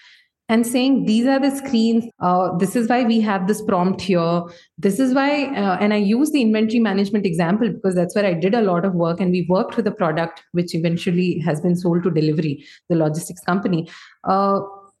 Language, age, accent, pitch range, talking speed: English, 30-49, Indian, 185-265 Hz, 210 wpm